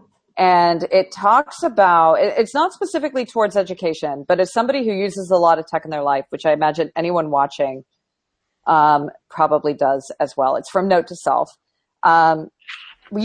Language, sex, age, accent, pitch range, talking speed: English, female, 40-59, American, 160-205 Hz, 170 wpm